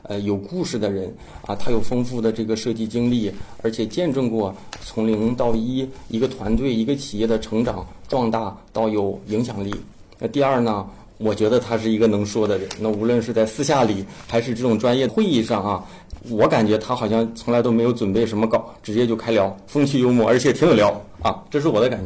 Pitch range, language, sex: 105-125 Hz, Chinese, male